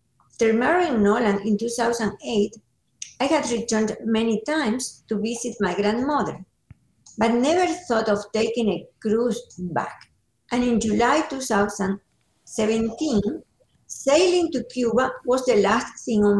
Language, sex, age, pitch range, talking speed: English, female, 50-69, 210-275 Hz, 125 wpm